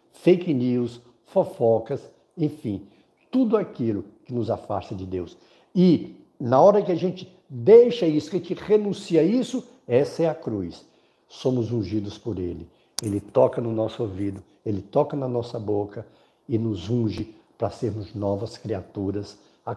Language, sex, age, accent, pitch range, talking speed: Portuguese, male, 60-79, Brazilian, 100-130 Hz, 155 wpm